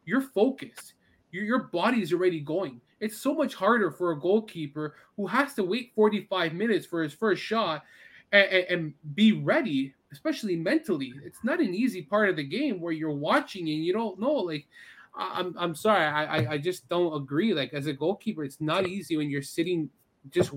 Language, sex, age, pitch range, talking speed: English, male, 20-39, 145-190 Hz, 215 wpm